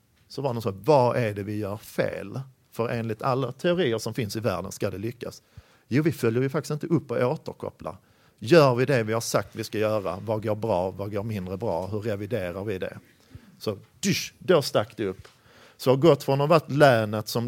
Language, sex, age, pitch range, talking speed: Swedish, male, 40-59, 105-125 Hz, 215 wpm